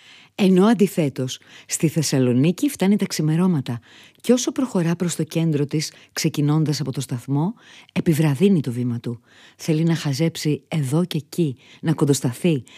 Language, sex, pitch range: Greek, female, 135-180 Hz